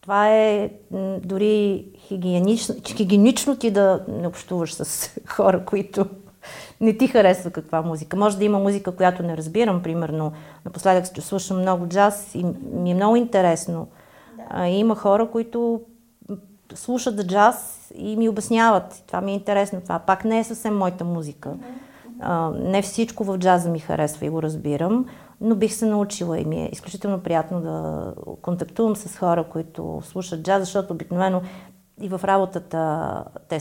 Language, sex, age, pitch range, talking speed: Bulgarian, female, 40-59, 160-215 Hz, 150 wpm